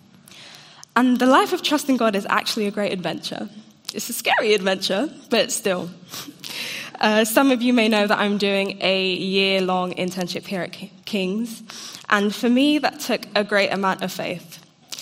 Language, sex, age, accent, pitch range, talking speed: English, female, 10-29, British, 185-225 Hz, 170 wpm